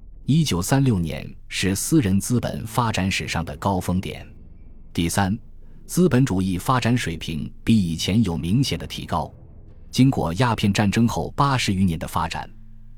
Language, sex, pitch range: Chinese, male, 85-115 Hz